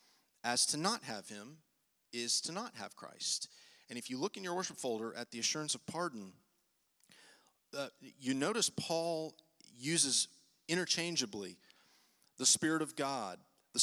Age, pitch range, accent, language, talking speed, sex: 40-59, 110-155 Hz, American, English, 150 wpm, male